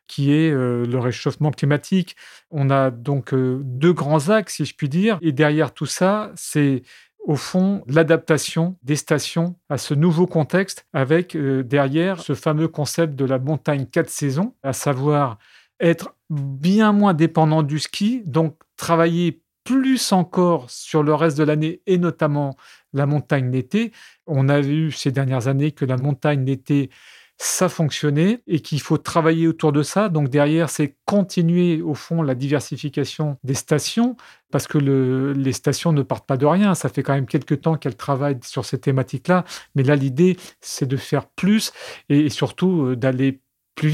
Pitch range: 140-170 Hz